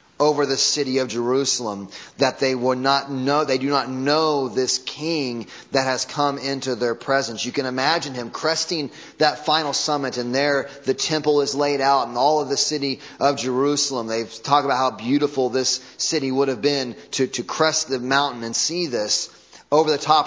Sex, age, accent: male, 30-49, American